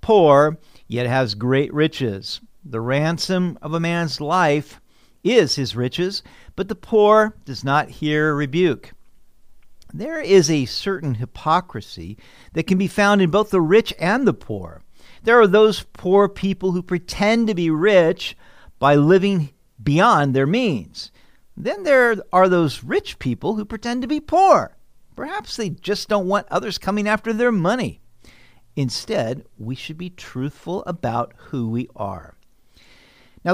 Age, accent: 50-69, American